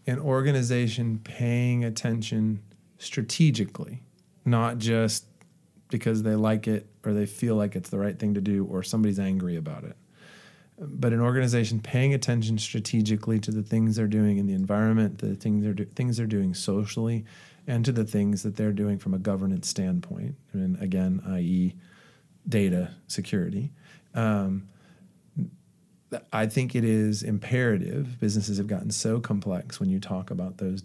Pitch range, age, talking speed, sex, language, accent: 100-140 Hz, 40-59, 160 wpm, male, English, American